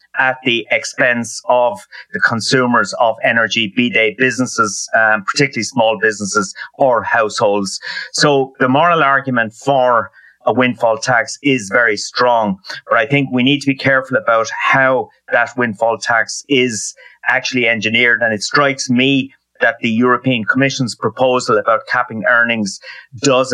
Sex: male